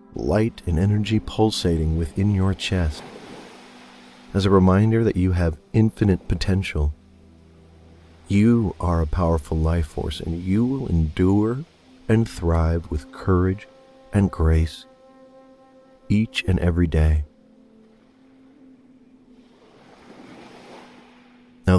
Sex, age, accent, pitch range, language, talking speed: male, 40-59, American, 85-115 Hz, English, 100 wpm